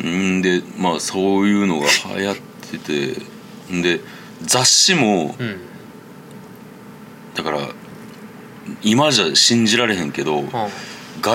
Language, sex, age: Japanese, male, 40-59